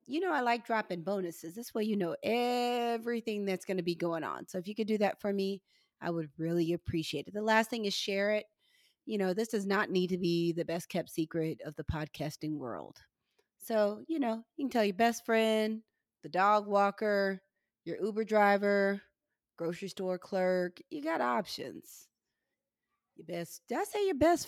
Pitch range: 185-245 Hz